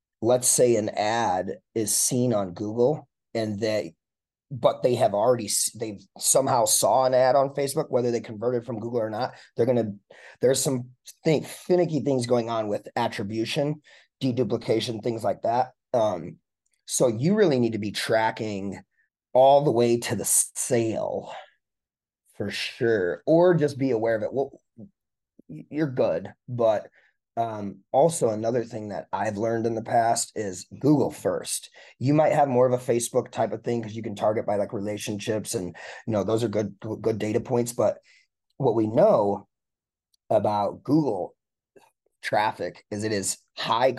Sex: male